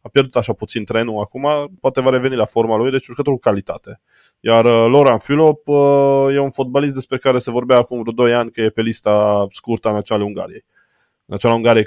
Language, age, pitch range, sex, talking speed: Romanian, 20-39, 105-140 Hz, male, 210 wpm